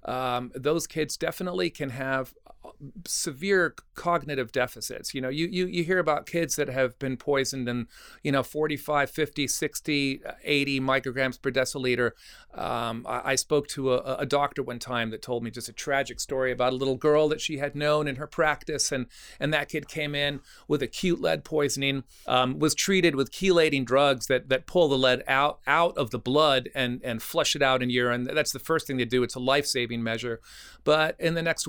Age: 40-59